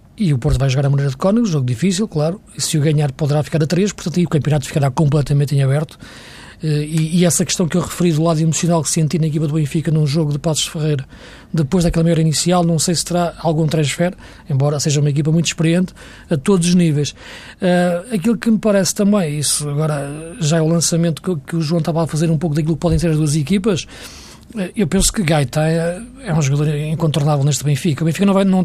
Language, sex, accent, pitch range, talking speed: Portuguese, male, Portuguese, 145-175 Hz, 230 wpm